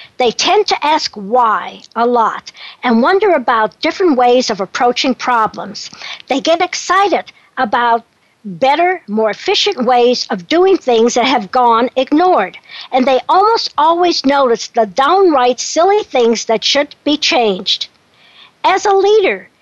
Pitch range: 245-350 Hz